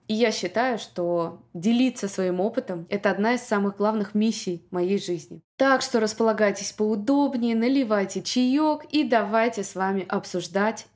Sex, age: female, 20-39